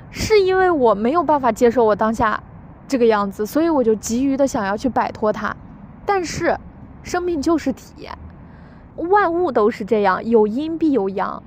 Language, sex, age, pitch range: Chinese, female, 20-39, 215-265 Hz